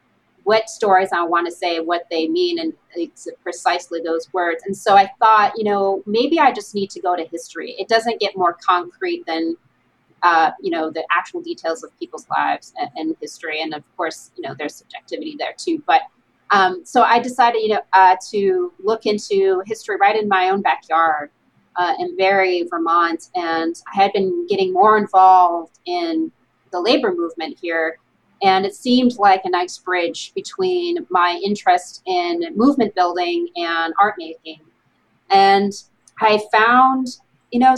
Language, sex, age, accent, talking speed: English, female, 30-49, American, 175 wpm